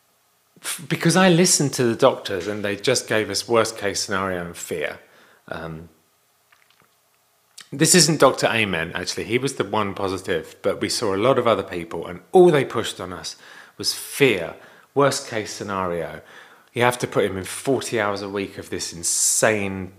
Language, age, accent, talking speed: English, 30-49, British, 175 wpm